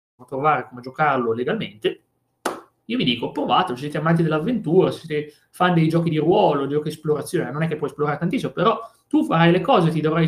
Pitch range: 140-180 Hz